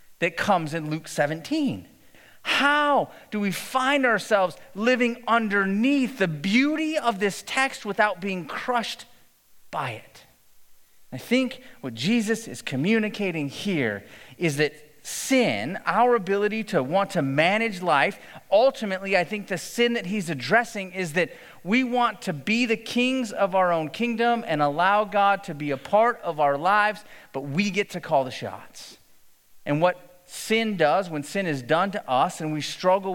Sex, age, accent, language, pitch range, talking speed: male, 30-49, American, English, 150-225 Hz, 160 wpm